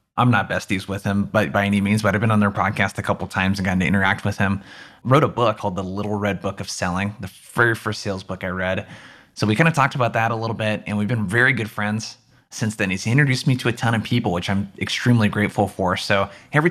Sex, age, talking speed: male, 20-39, 260 wpm